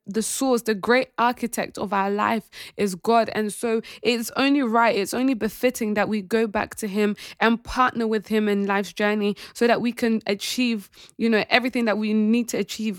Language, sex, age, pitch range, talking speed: English, female, 20-39, 205-235 Hz, 205 wpm